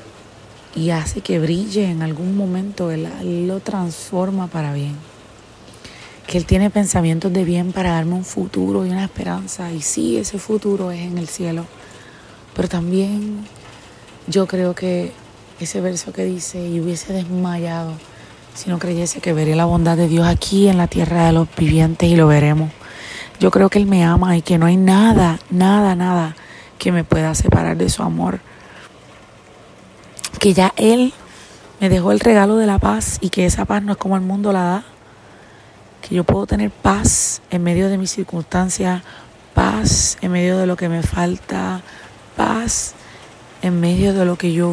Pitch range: 155-185 Hz